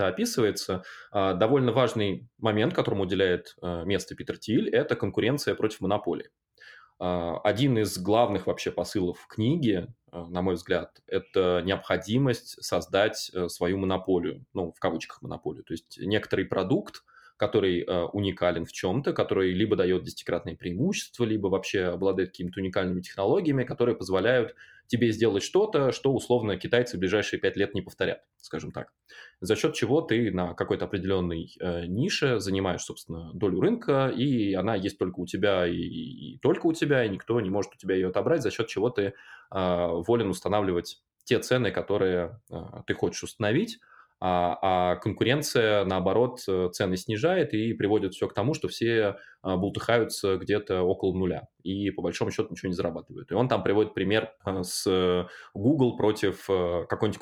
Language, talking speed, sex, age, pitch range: English, 150 wpm, male, 20-39, 90-110 Hz